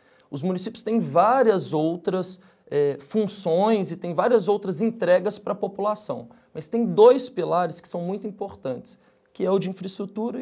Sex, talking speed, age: male, 155 wpm, 20-39